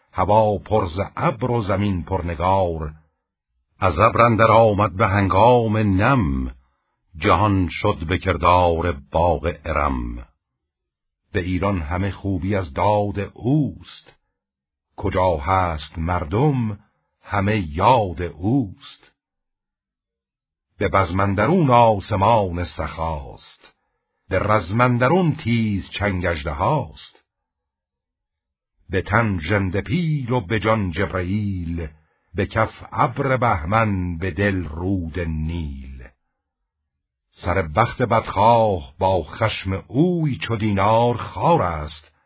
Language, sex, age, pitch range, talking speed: Persian, male, 60-79, 80-105 Hz, 90 wpm